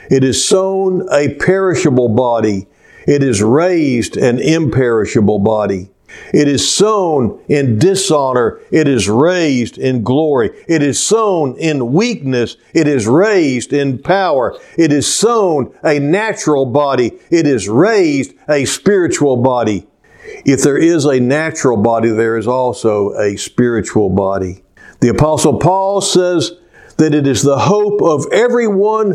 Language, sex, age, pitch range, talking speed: English, male, 60-79, 135-195 Hz, 140 wpm